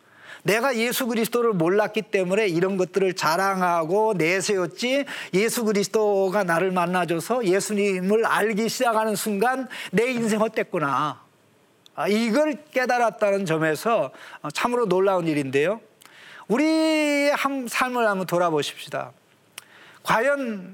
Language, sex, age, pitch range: Korean, male, 40-59, 180-240 Hz